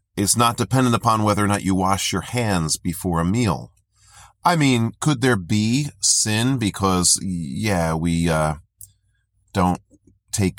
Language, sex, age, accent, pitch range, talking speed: English, male, 40-59, American, 90-110 Hz, 145 wpm